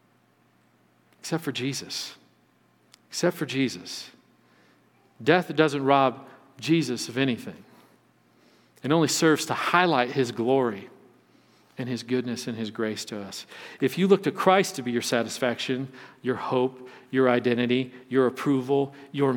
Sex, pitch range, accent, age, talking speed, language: male, 125-165 Hz, American, 50-69, 135 wpm, English